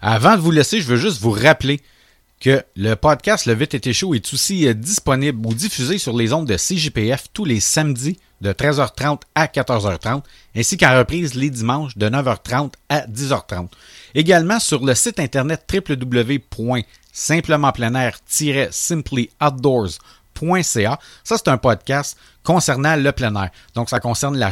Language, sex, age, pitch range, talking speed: French, male, 40-59, 115-150 Hz, 145 wpm